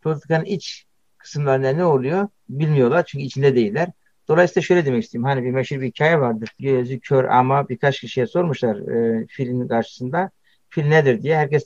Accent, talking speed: native, 165 wpm